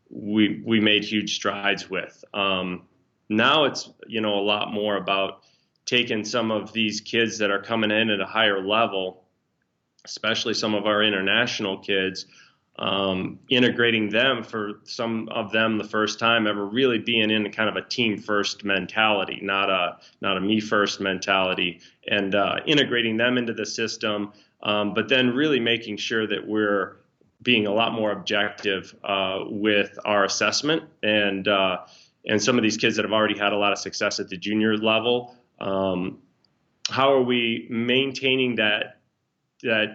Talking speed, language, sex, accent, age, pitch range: 165 wpm, English, male, American, 30-49, 100-120 Hz